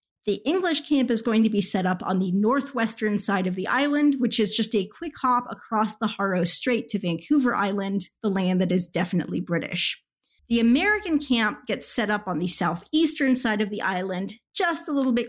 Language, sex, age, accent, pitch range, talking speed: English, female, 30-49, American, 195-255 Hz, 205 wpm